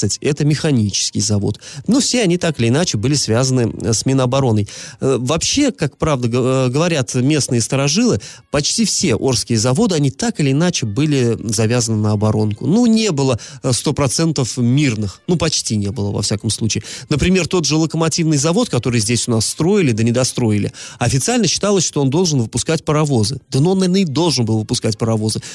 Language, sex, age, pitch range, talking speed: Russian, male, 30-49, 115-160 Hz, 165 wpm